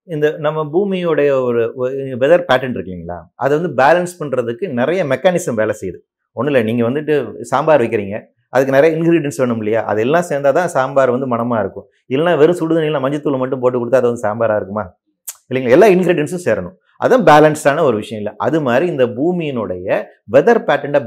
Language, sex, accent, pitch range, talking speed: Tamil, male, native, 120-160 Hz, 165 wpm